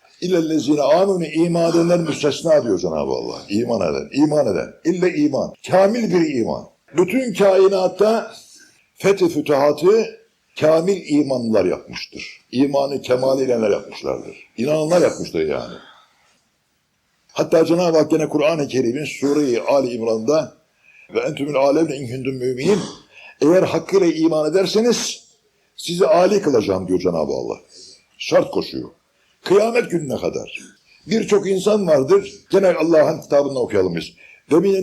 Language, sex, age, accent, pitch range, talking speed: Turkish, male, 60-79, native, 145-200 Hz, 115 wpm